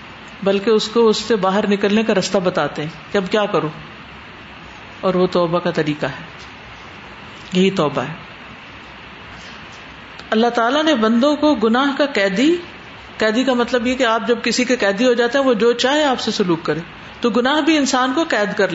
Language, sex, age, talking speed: Urdu, female, 50-69, 190 wpm